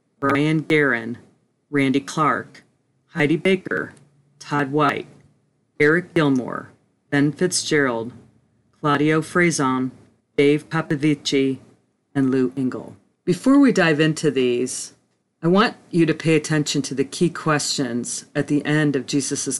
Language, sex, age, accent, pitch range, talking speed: English, female, 40-59, American, 135-160 Hz, 120 wpm